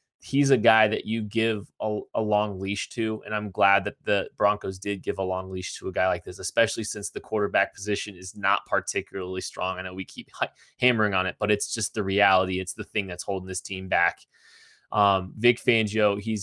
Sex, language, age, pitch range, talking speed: male, English, 20-39, 100-115 Hz, 220 wpm